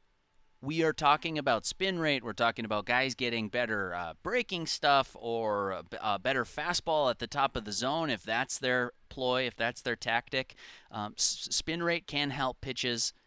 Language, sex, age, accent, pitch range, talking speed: English, male, 30-49, American, 100-130 Hz, 170 wpm